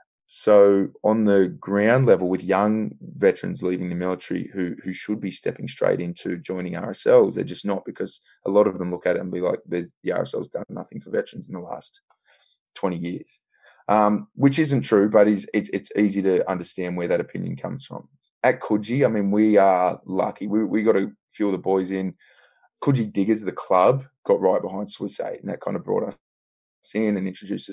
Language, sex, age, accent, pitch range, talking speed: English, male, 20-39, Australian, 95-115 Hz, 210 wpm